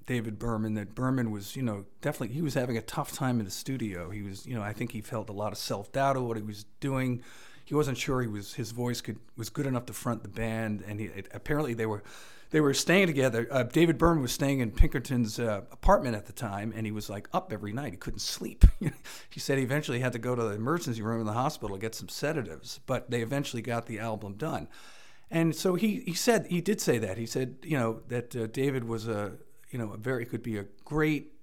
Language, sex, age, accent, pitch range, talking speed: English, male, 40-59, American, 110-135 Hz, 255 wpm